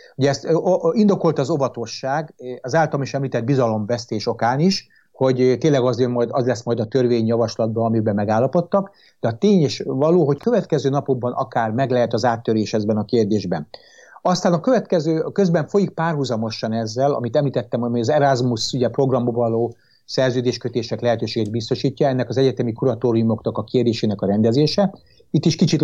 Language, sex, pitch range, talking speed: Hungarian, male, 120-150 Hz, 155 wpm